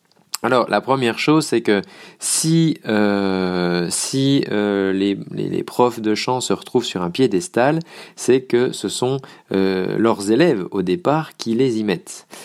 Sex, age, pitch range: male, 40-59, 100-140 Hz